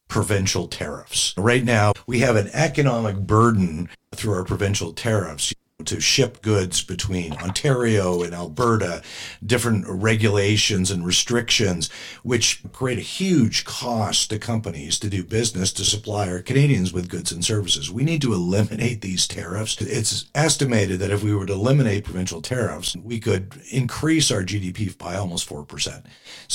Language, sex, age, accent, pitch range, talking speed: English, male, 50-69, American, 95-120 Hz, 150 wpm